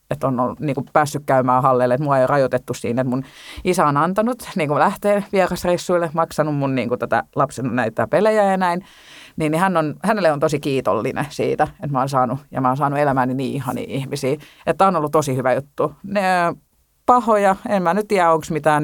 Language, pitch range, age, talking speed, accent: Finnish, 130-180 Hz, 30-49, 210 wpm, native